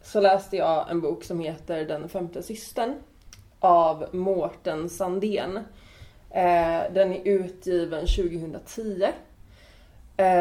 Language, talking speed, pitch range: Swedish, 100 wpm, 170-200 Hz